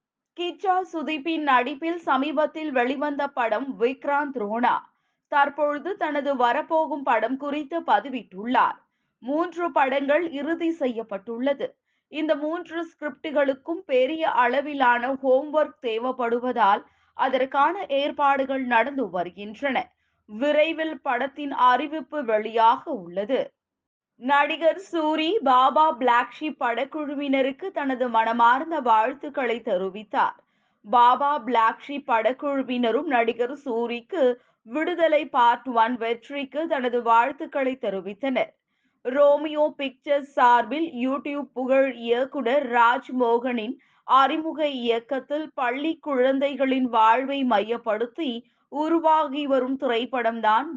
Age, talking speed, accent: 20-39, 85 wpm, native